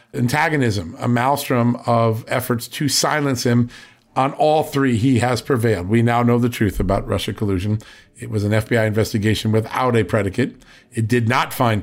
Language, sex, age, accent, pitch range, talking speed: English, male, 50-69, American, 115-145 Hz, 175 wpm